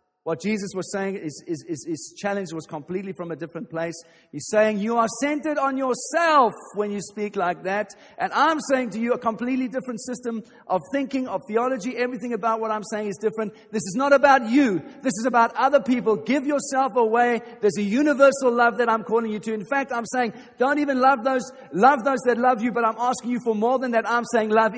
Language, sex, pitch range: English, male, 165-235 Hz